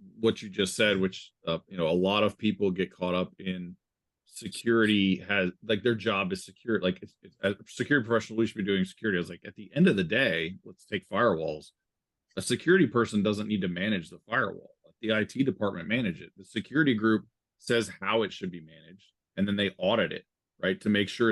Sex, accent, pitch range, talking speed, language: male, American, 95-115 Hz, 225 wpm, English